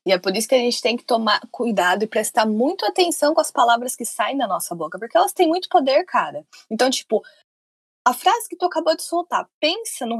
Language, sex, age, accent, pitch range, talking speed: Portuguese, female, 20-39, Brazilian, 220-300 Hz, 230 wpm